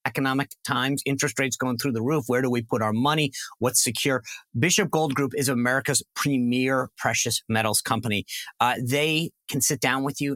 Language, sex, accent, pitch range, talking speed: English, male, American, 120-145 Hz, 185 wpm